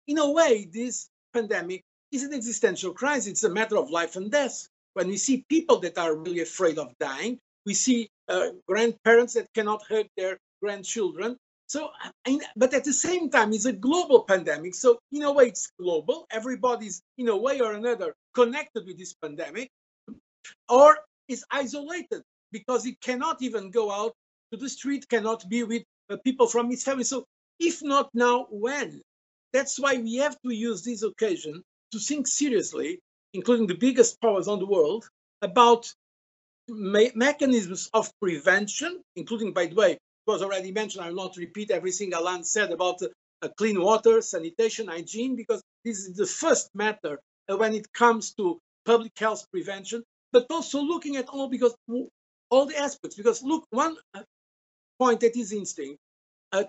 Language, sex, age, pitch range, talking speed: English, male, 50-69, 205-270 Hz, 170 wpm